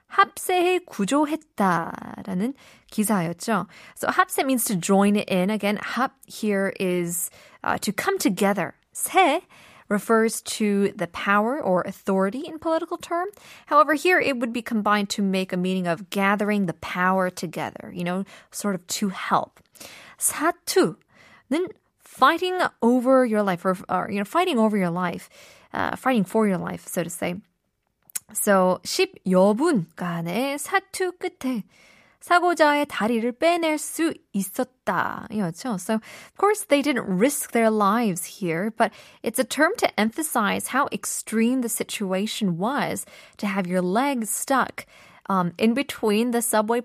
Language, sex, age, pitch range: Korean, female, 20-39, 195-280 Hz